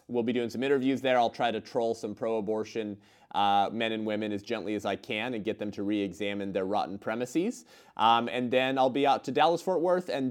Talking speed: 220 wpm